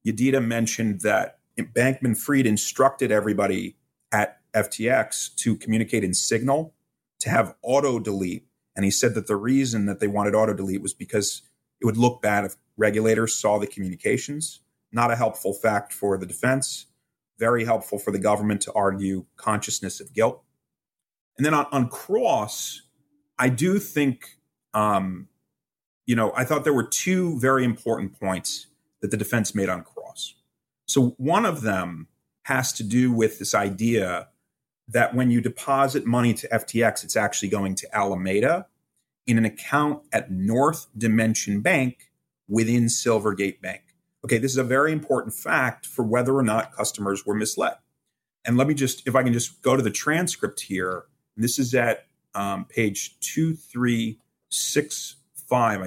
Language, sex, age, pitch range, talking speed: English, male, 30-49, 105-130 Hz, 155 wpm